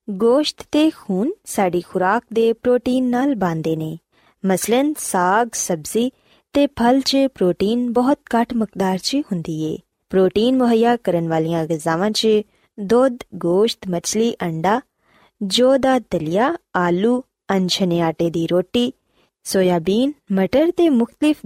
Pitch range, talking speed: 185-260 Hz, 125 wpm